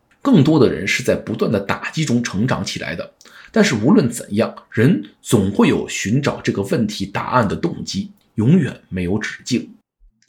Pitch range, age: 160-225 Hz, 50-69